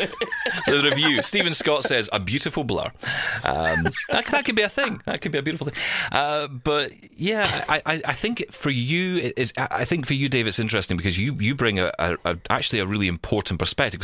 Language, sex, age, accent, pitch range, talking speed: English, male, 30-49, British, 85-135 Hz, 220 wpm